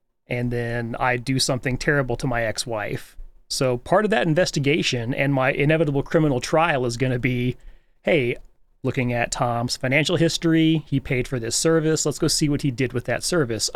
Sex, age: male, 30-49